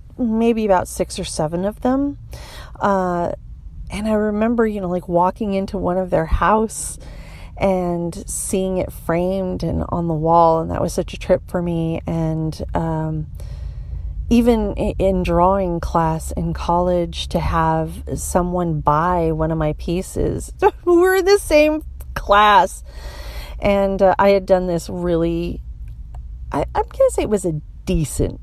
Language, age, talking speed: English, 40-59, 145 wpm